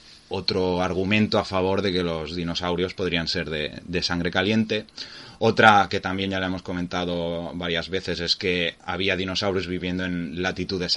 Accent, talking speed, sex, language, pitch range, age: Spanish, 165 wpm, male, Spanish, 85-100 Hz, 20-39